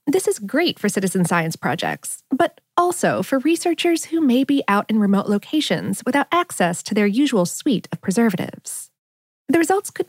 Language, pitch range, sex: English, 195-285 Hz, female